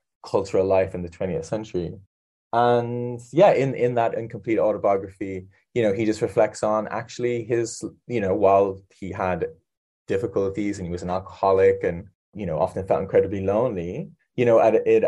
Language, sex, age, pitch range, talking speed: English, male, 20-39, 90-110 Hz, 175 wpm